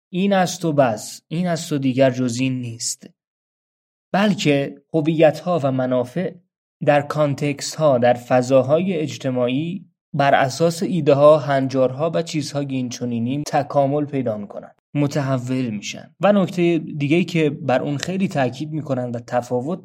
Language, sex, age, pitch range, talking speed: Persian, male, 20-39, 120-150 Hz, 140 wpm